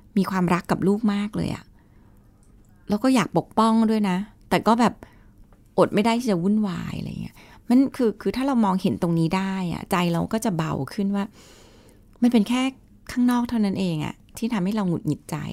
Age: 30-49